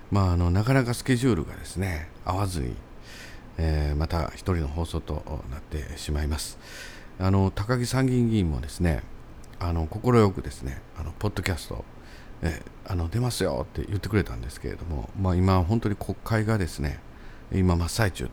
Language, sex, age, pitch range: Japanese, male, 50-69, 75-100 Hz